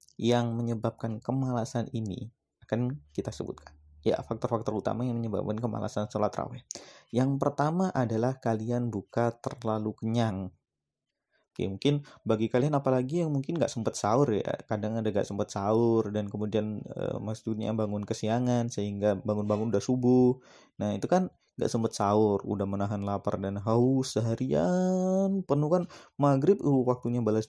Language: Indonesian